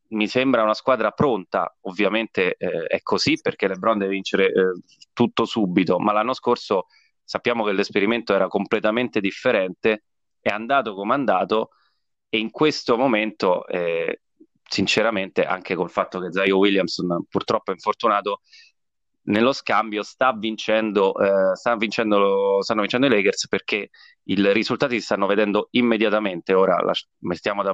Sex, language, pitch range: male, Italian, 95-115 Hz